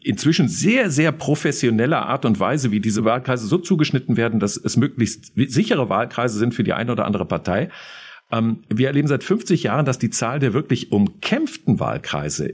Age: 50-69